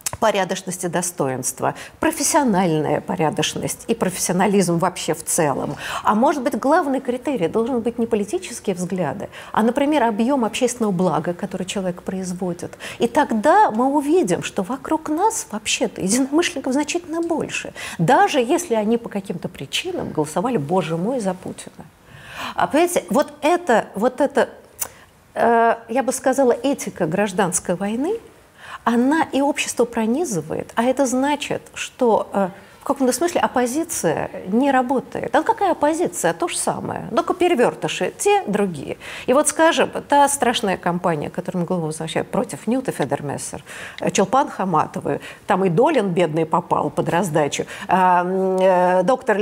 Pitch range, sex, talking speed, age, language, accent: 180-280 Hz, female, 135 wpm, 50-69, Russian, native